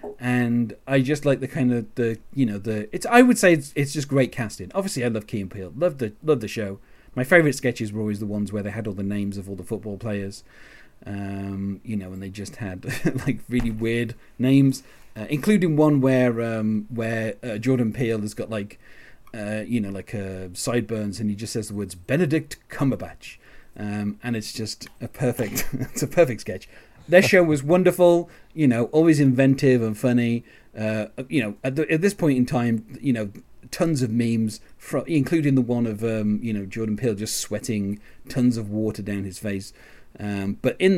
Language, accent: English, British